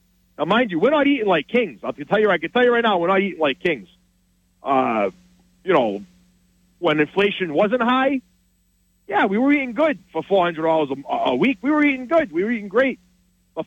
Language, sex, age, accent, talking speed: English, male, 40-59, American, 215 wpm